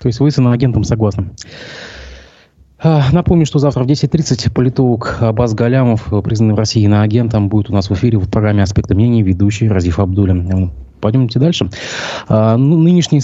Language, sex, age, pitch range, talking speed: Russian, male, 20-39, 100-125 Hz, 165 wpm